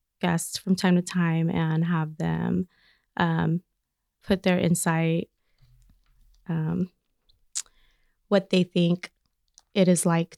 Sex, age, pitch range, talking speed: female, 20-39, 165-200 Hz, 110 wpm